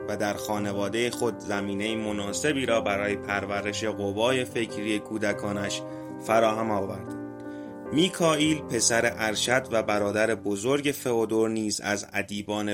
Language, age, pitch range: Persian, 30-49, 100-110 Hz